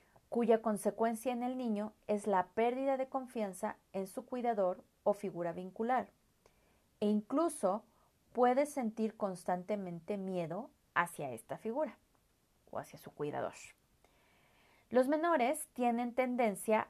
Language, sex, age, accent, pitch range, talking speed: Spanish, female, 30-49, Mexican, 195-255 Hz, 115 wpm